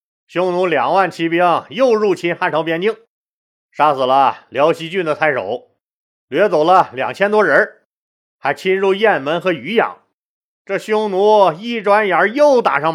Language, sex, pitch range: Chinese, male, 165-225 Hz